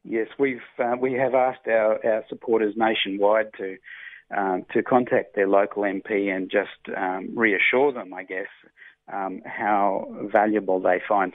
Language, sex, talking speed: English, male, 155 wpm